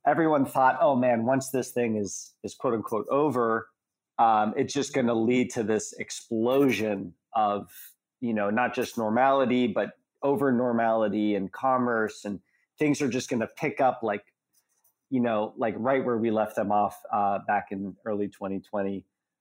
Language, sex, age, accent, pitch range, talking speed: English, male, 40-59, American, 110-135 Hz, 170 wpm